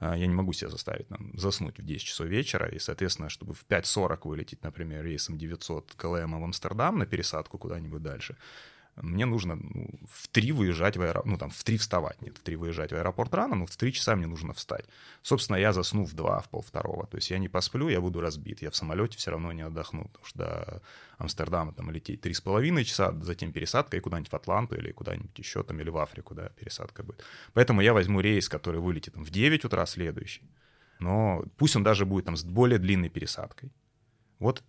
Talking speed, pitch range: 210 wpm, 85-110 Hz